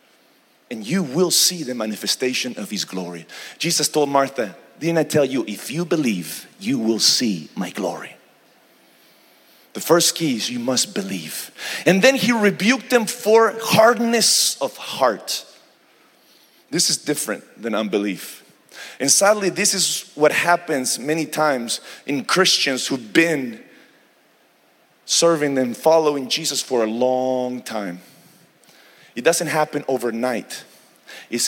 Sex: male